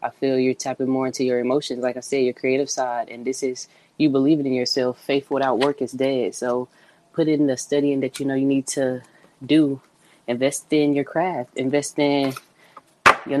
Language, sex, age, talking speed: English, female, 10-29, 200 wpm